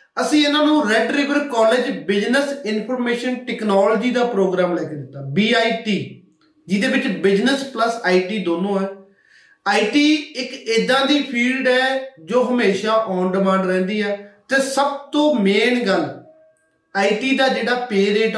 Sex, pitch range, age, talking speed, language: male, 210-275 Hz, 30-49, 145 wpm, Punjabi